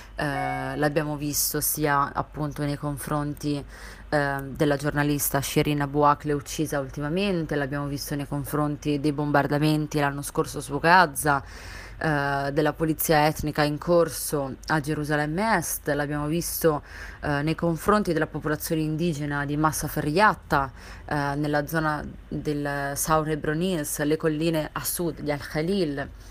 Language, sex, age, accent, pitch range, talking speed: Italian, female, 30-49, native, 145-160 Hz, 130 wpm